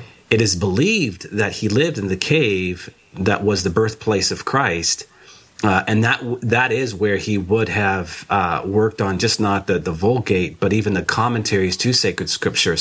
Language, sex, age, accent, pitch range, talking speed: English, male, 30-49, American, 95-110 Hz, 185 wpm